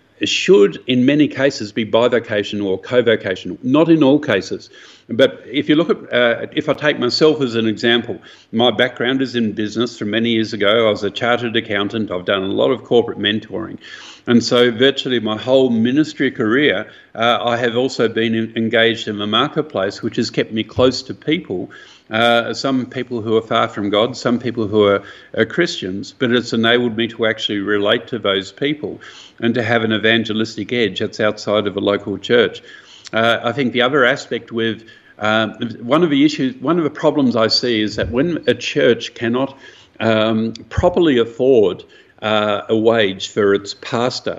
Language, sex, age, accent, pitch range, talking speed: English, male, 50-69, Australian, 105-125 Hz, 185 wpm